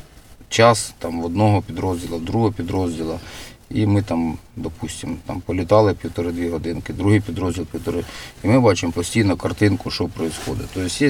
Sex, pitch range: male, 85-105 Hz